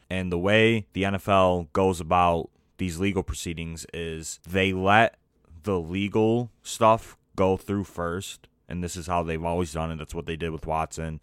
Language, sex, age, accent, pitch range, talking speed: English, male, 20-39, American, 85-100 Hz, 175 wpm